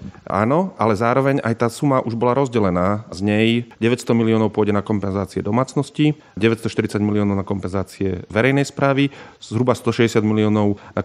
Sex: male